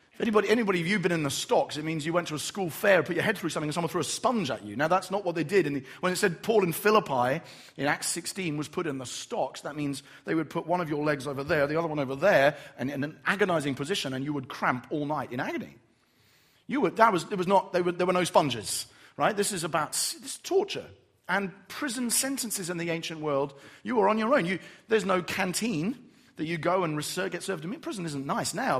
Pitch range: 155-220 Hz